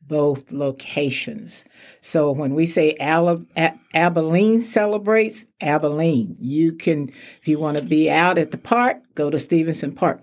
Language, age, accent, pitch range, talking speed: English, 60-79, American, 155-185 Hz, 140 wpm